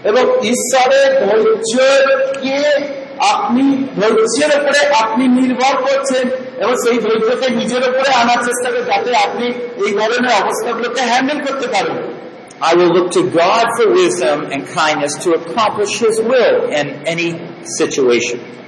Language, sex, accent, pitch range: Bengali, male, native, 230-285 Hz